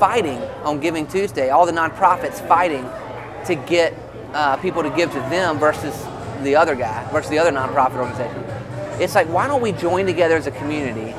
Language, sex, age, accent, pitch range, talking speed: English, male, 30-49, American, 135-175 Hz, 190 wpm